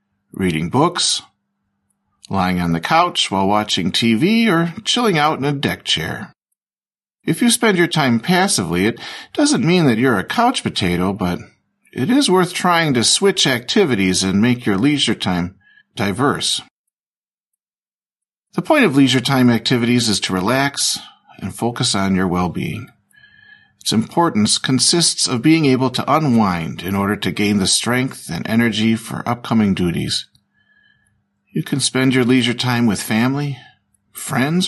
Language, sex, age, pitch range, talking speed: Slovak, male, 50-69, 105-160 Hz, 150 wpm